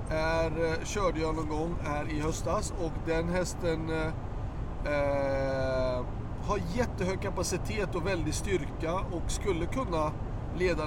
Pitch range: 115-155 Hz